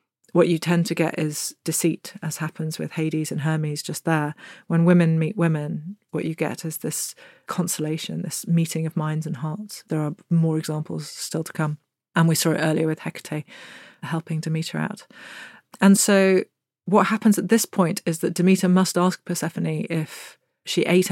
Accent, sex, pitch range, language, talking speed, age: British, female, 155-175 Hz, English, 180 wpm, 30-49